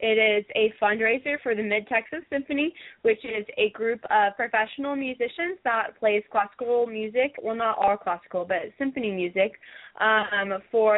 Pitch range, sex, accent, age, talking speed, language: 210-250 Hz, female, American, 20-39, 155 wpm, English